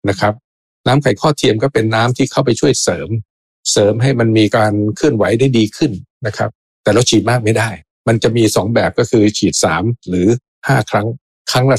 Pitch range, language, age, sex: 105-130 Hz, Thai, 60-79, male